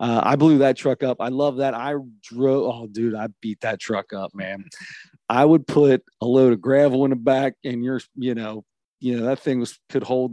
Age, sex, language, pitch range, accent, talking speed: 30-49, male, English, 120-145 Hz, American, 230 wpm